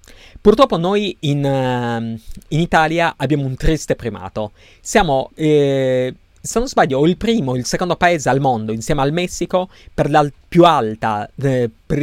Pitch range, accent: 105-155 Hz, native